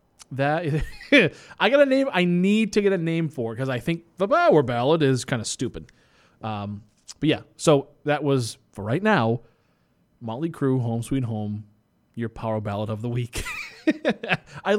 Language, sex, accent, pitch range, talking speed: English, male, American, 120-195 Hz, 180 wpm